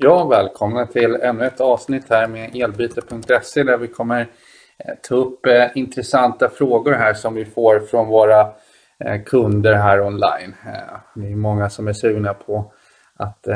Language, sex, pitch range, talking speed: Swedish, male, 105-120 Hz, 145 wpm